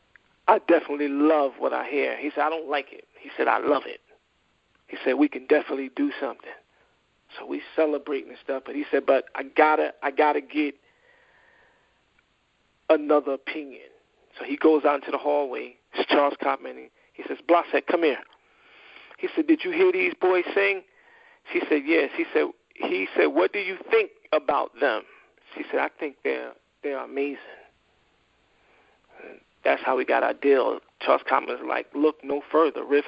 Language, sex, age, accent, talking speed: English, male, 40-59, American, 180 wpm